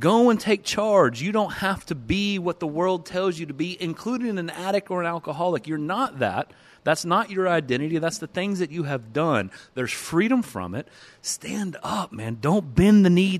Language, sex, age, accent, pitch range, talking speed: English, male, 30-49, American, 120-160 Hz, 210 wpm